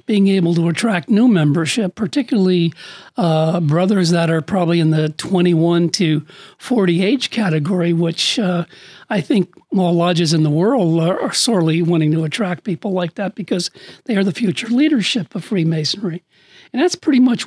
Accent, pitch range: American, 175-230 Hz